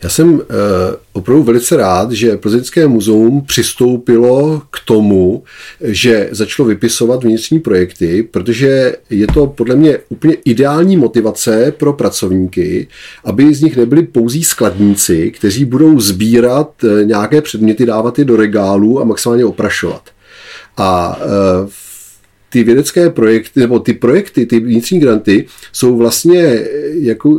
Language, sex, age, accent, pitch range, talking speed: Czech, male, 40-59, native, 105-145 Hz, 125 wpm